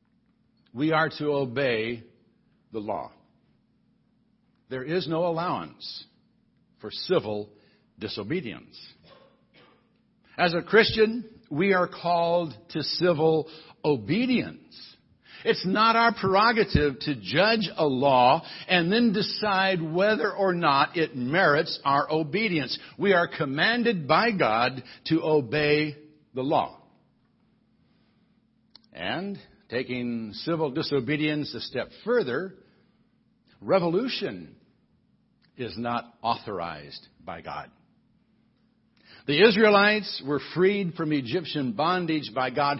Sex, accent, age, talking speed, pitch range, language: male, American, 60-79, 100 wpm, 140-200 Hz, English